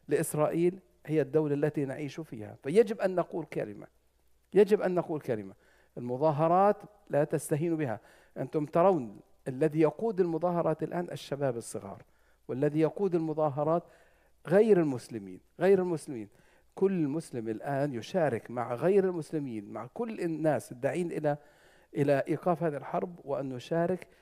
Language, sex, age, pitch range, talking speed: English, male, 50-69, 130-170 Hz, 125 wpm